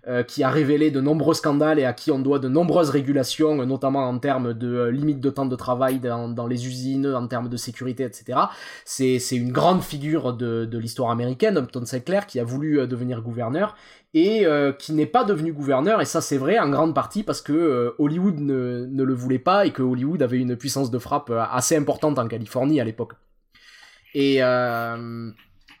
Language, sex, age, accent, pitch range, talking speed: French, male, 20-39, French, 120-150 Hz, 200 wpm